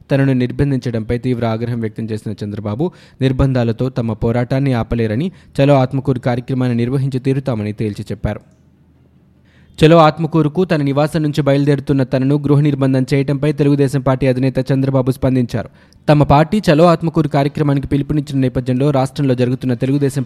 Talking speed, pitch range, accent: 125 wpm, 120-140 Hz, native